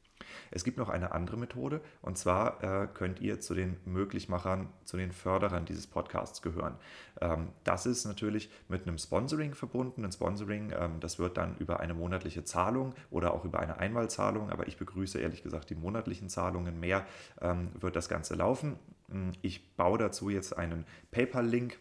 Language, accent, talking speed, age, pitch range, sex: German, German, 175 wpm, 30-49, 85-105 Hz, male